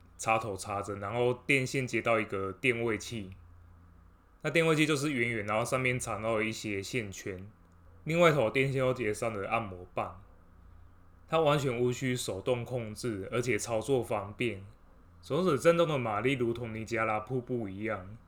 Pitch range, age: 95-125 Hz, 20-39